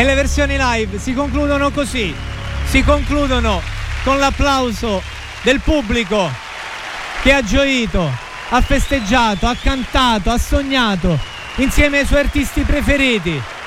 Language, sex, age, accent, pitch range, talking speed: Italian, male, 40-59, native, 210-270 Hz, 120 wpm